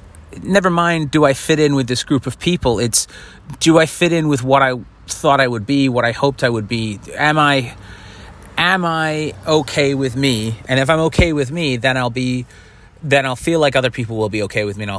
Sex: male